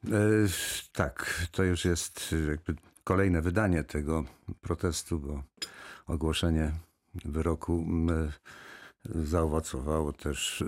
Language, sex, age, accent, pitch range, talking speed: Polish, male, 50-69, native, 80-95 Hz, 75 wpm